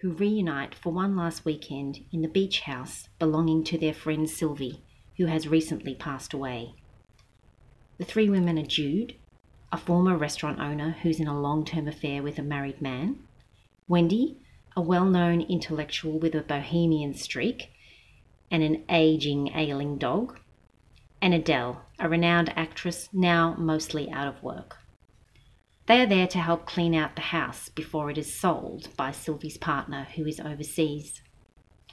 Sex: female